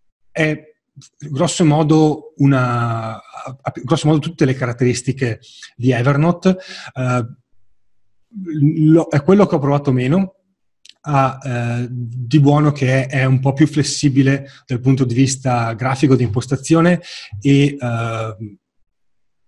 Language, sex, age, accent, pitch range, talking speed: Italian, male, 30-49, native, 120-140 Hz, 115 wpm